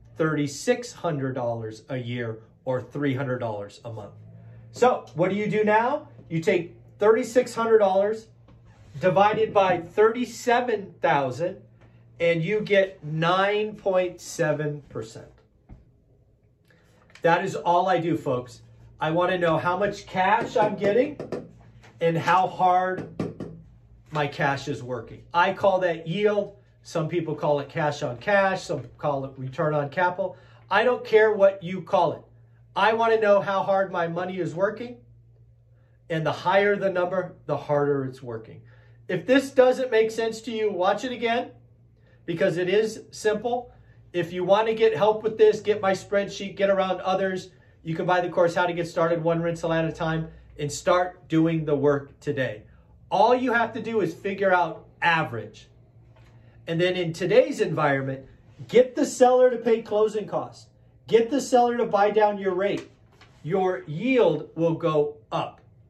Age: 40-59